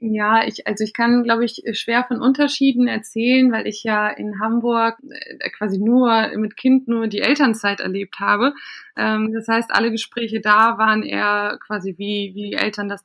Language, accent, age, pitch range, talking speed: German, German, 20-39, 210-245 Hz, 170 wpm